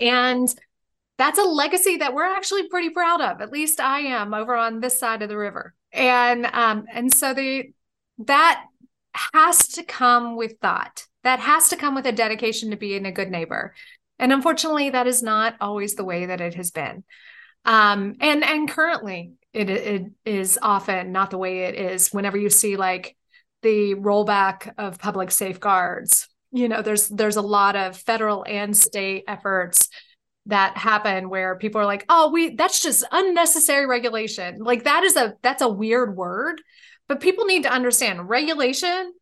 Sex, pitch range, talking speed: female, 205-295 Hz, 175 wpm